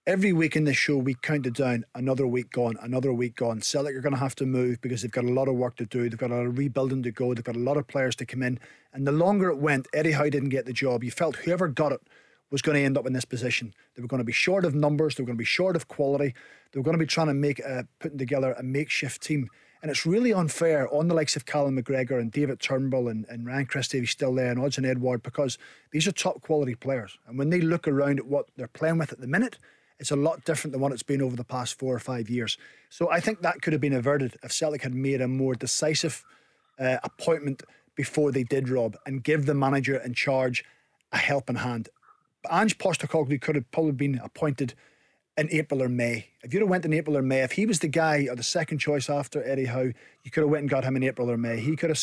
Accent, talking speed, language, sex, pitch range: British, 270 wpm, English, male, 125-150 Hz